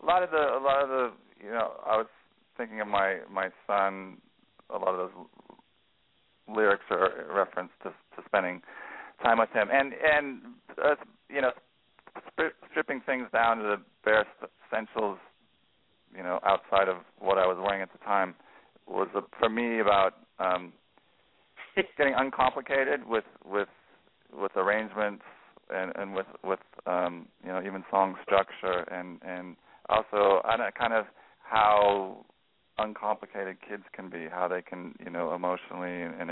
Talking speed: 160 wpm